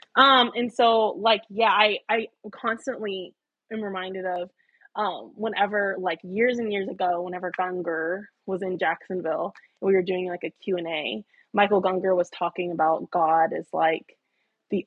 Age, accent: 20-39, American